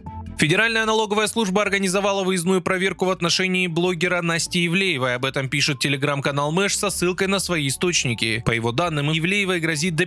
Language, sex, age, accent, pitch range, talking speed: Russian, male, 20-39, native, 135-195 Hz, 160 wpm